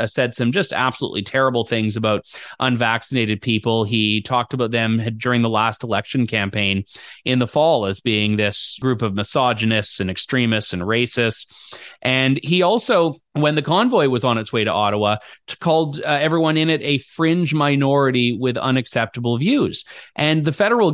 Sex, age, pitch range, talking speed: male, 30-49, 115-145 Hz, 165 wpm